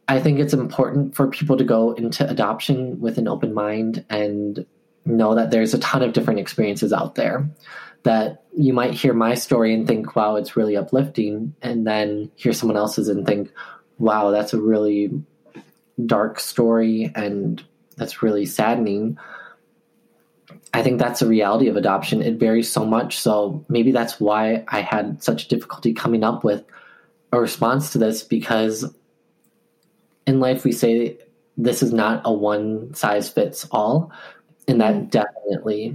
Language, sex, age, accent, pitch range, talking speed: English, male, 20-39, American, 105-125 Hz, 160 wpm